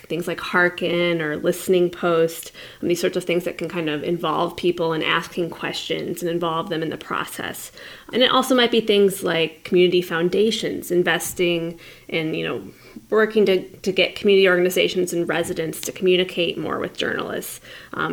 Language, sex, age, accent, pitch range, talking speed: English, female, 20-39, American, 170-205 Hz, 175 wpm